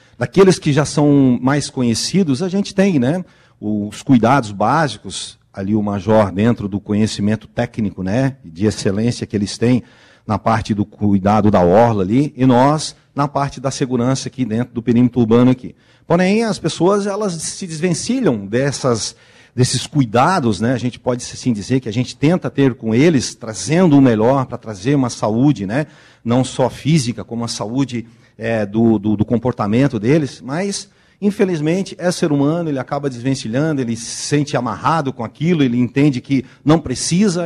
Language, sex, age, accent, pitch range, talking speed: Portuguese, male, 50-69, Brazilian, 115-145 Hz, 170 wpm